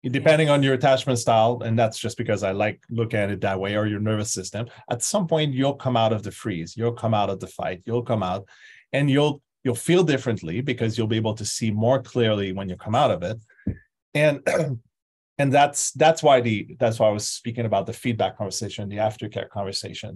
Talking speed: 225 wpm